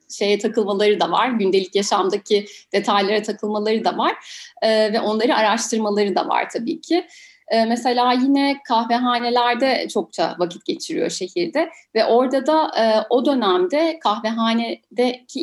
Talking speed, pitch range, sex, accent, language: 130 wpm, 215-290 Hz, female, native, Turkish